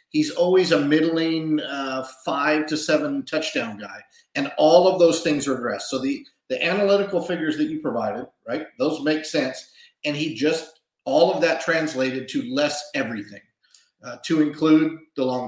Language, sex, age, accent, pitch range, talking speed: English, male, 40-59, American, 140-185 Hz, 170 wpm